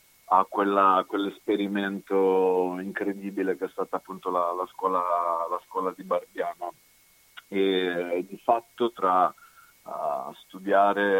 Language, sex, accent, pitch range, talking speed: Italian, male, native, 90-105 Hz, 95 wpm